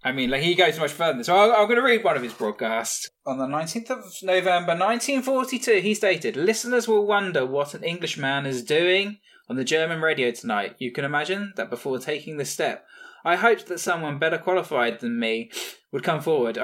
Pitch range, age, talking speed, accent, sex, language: 135-180 Hz, 10-29, 210 wpm, British, male, English